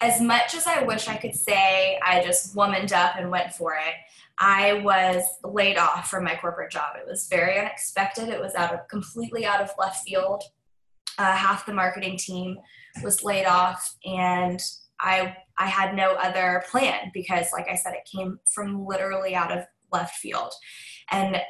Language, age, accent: English, 10-29, American